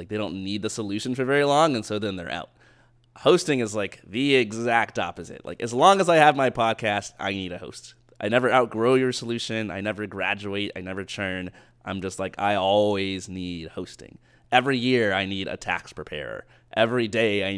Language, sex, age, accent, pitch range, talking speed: English, male, 20-39, American, 95-120 Hz, 205 wpm